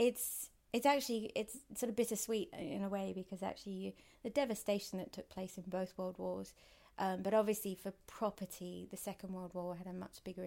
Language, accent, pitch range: English, British, 180-205 Hz